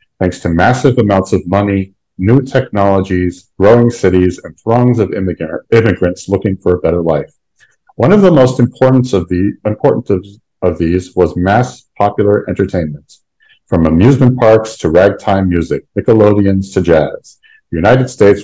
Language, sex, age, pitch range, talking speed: English, male, 50-69, 90-125 Hz, 135 wpm